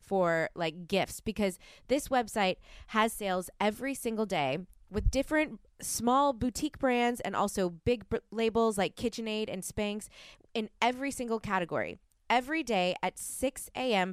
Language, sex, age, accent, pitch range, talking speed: English, female, 20-39, American, 185-240 Hz, 140 wpm